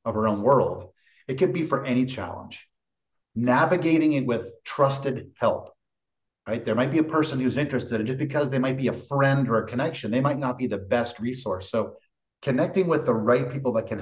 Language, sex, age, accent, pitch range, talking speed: English, male, 40-59, American, 110-135 Hz, 210 wpm